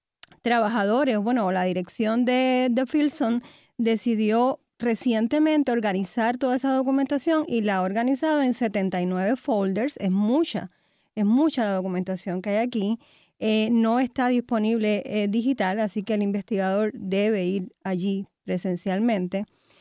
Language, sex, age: Spanish, female, 30-49